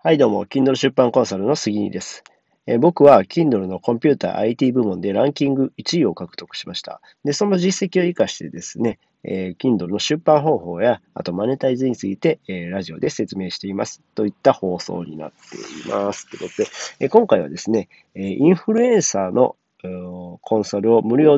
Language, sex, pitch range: Japanese, male, 95-145 Hz